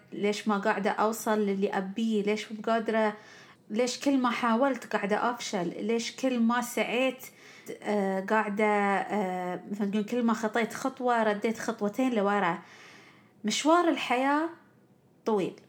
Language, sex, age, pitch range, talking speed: Arabic, female, 30-49, 205-260 Hz, 115 wpm